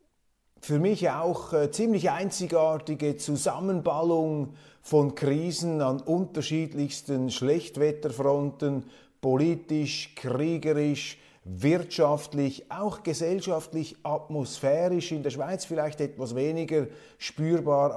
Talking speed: 85 wpm